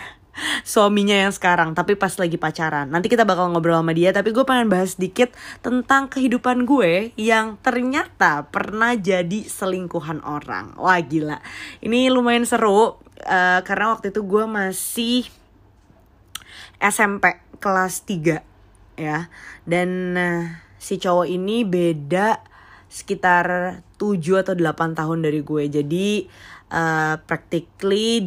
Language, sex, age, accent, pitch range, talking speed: Indonesian, female, 20-39, native, 165-205 Hz, 125 wpm